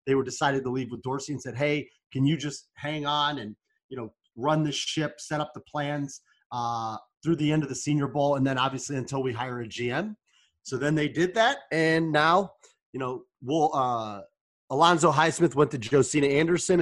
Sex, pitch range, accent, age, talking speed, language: male, 130-165 Hz, American, 30-49, 205 wpm, English